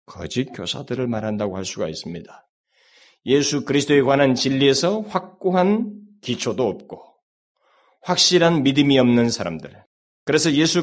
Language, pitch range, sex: Korean, 125-190 Hz, male